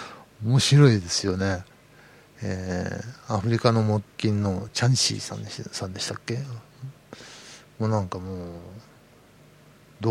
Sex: male